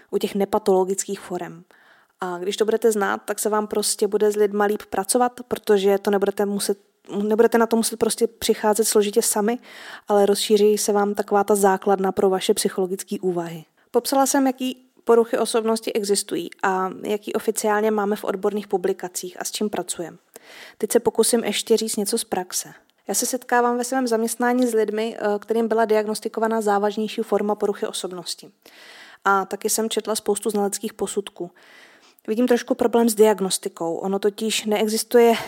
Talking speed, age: 160 wpm, 20-39